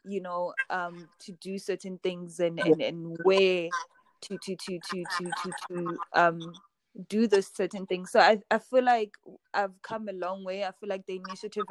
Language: English